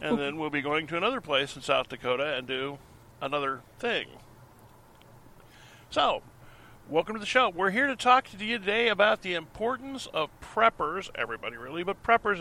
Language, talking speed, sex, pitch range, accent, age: English, 175 wpm, male, 115-185 Hz, American, 40-59